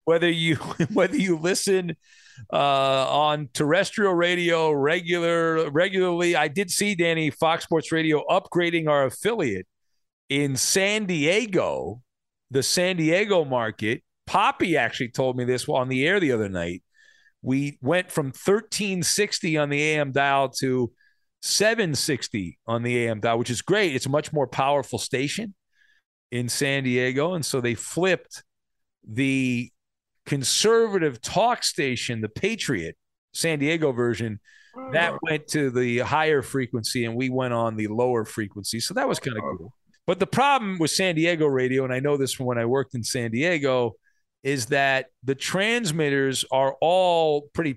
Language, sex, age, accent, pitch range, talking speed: English, male, 40-59, American, 130-175 Hz, 155 wpm